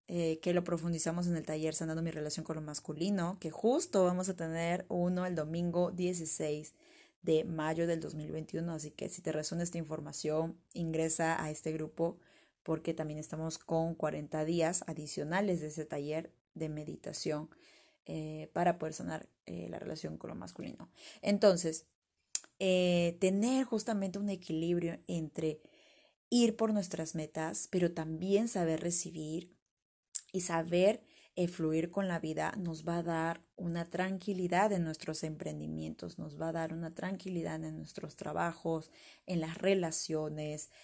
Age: 20-39